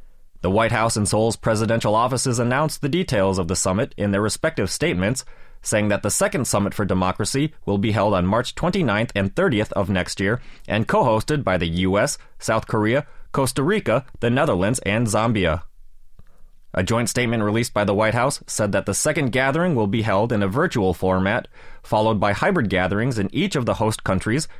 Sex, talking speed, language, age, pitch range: male, 190 wpm, English, 30-49, 95-125 Hz